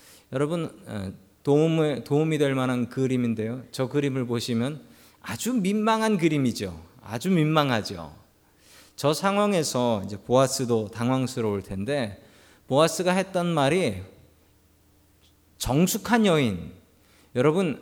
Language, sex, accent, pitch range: Korean, male, native, 100-160 Hz